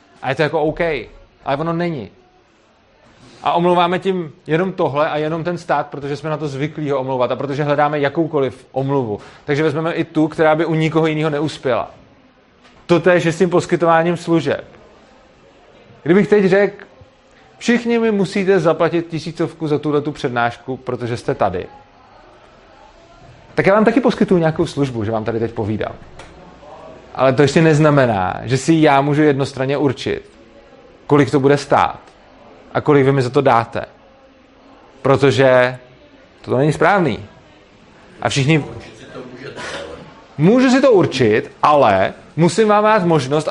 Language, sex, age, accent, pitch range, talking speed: Czech, male, 30-49, native, 140-185 Hz, 150 wpm